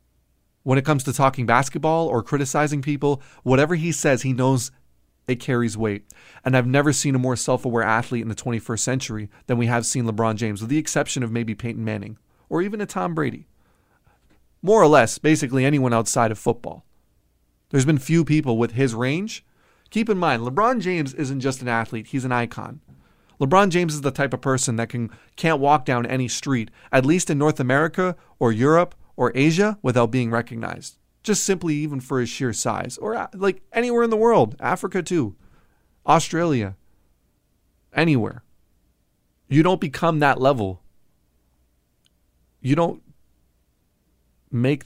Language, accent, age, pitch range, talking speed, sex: English, American, 30-49, 110-150 Hz, 165 wpm, male